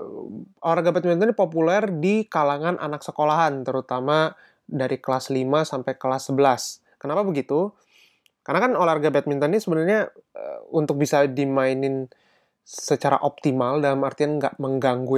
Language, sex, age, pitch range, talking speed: Indonesian, male, 20-39, 135-175 Hz, 130 wpm